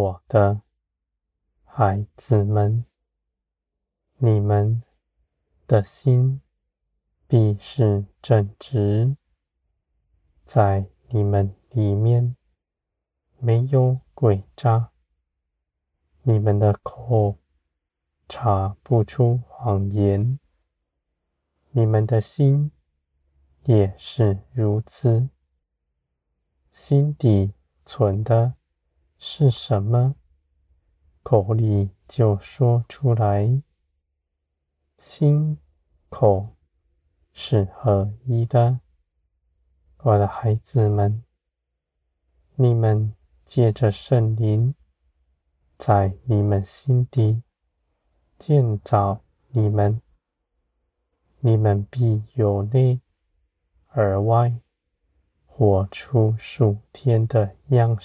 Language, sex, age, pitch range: Chinese, male, 20-39, 70-115 Hz